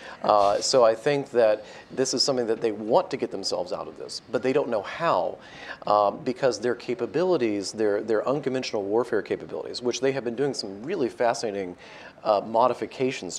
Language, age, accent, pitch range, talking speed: English, 40-59, American, 110-130 Hz, 185 wpm